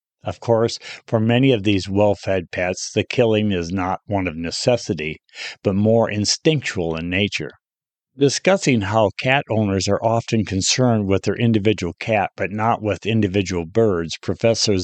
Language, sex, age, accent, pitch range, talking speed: English, male, 50-69, American, 100-125 Hz, 150 wpm